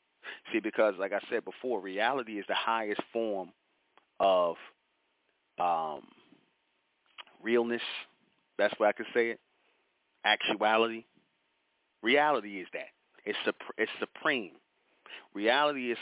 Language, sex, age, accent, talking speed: English, male, 30-49, American, 110 wpm